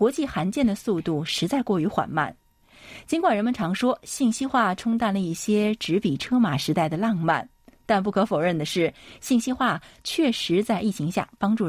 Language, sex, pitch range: Chinese, female, 165-235 Hz